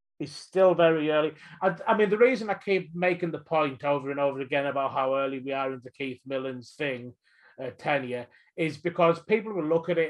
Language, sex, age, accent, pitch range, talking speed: English, male, 30-49, British, 135-160 Hz, 220 wpm